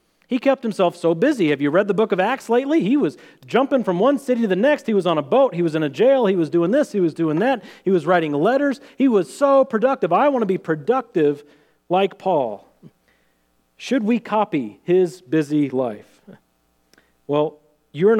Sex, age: male, 40-59